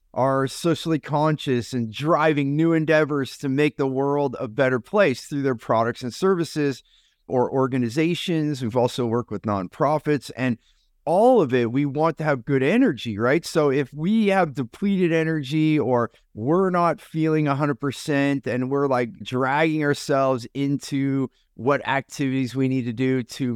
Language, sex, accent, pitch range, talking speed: English, male, American, 130-160 Hz, 155 wpm